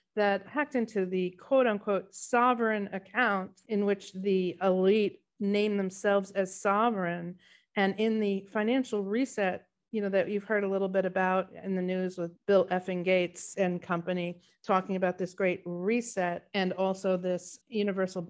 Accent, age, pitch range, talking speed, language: American, 50-69, 185-220 Hz, 155 wpm, English